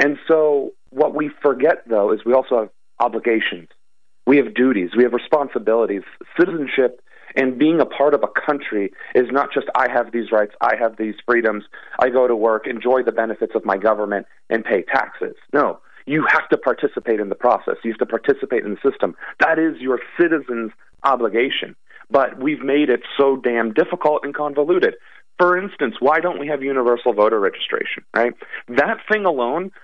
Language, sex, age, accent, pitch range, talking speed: English, male, 40-59, American, 120-160 Hz, 185 wpm